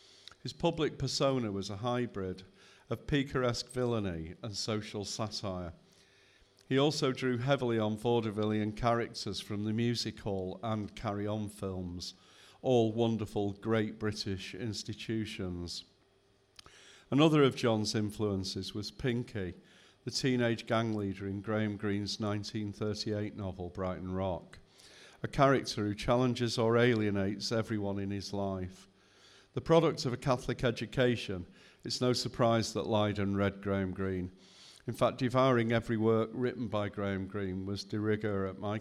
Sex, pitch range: male, 100-120 Hz